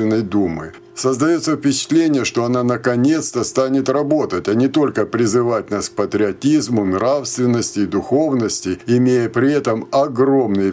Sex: male